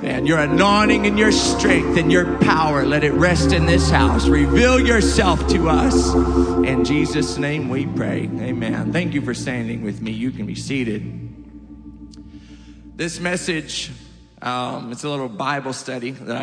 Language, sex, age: English, male, 40-59